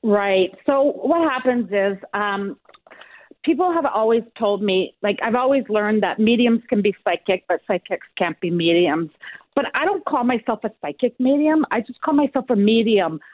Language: English